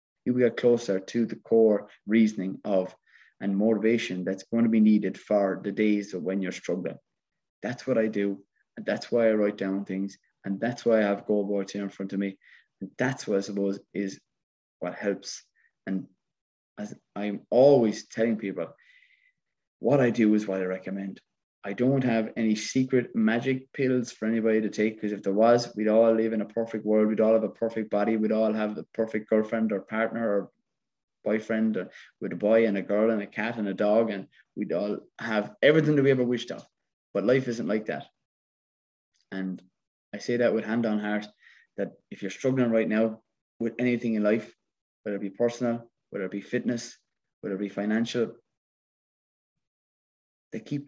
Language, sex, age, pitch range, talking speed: English, male, 20-39, 100-115 Hz, 190 wpm